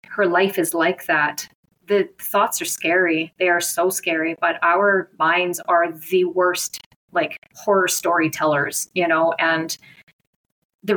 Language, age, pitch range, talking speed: English, 30-49, 170-200 Hz, 140 wpm